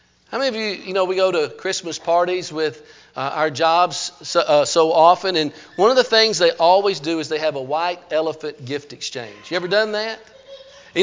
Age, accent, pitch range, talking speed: 50-69, American, 160-205 Hz, 220 wpm